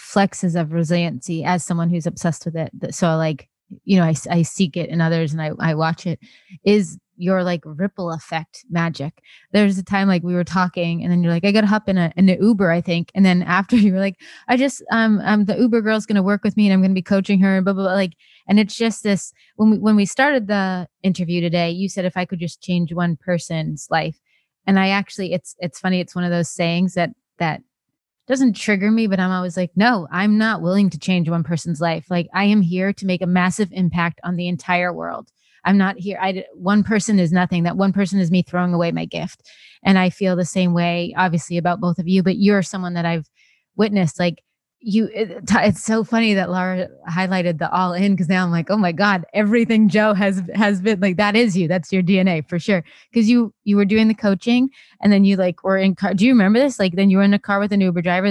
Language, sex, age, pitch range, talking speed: English, female, 20-39, 175-205 Hz, 245 wpm